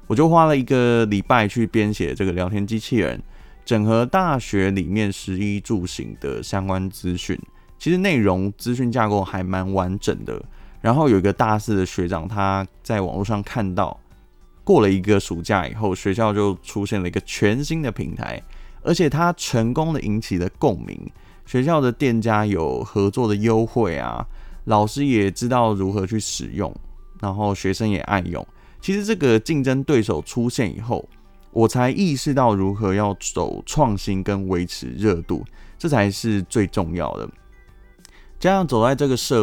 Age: 20-39